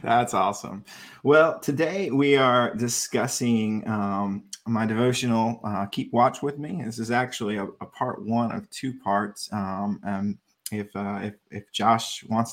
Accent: American